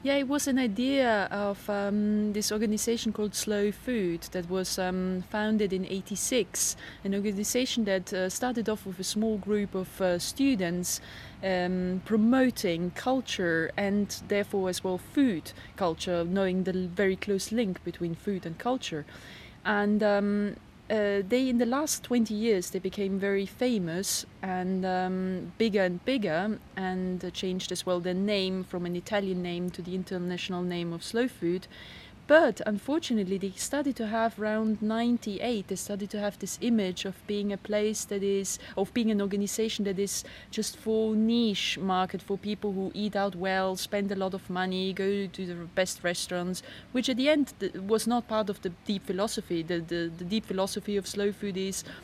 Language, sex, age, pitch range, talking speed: English, female, 20-39, 185-215 Hz, 175 wpm